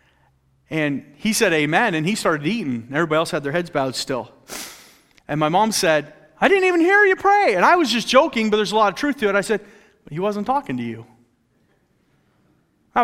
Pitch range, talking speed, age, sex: 125-175 Hz, 210 wpm, 30-49, male